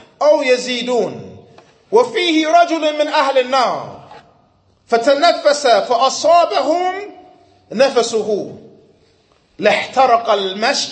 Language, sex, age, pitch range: English, male, 30-49, 245-315 Hz